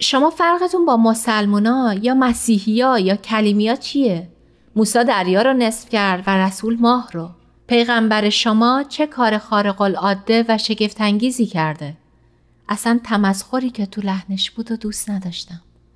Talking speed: 135 wpm